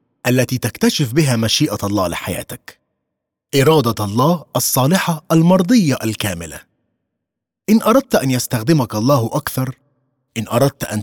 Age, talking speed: 30-49, 110 wpm